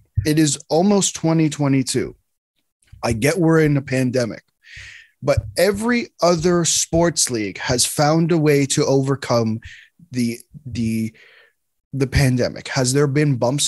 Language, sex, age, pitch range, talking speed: English, male, 20-39, 125-165 Hz, 125 wpm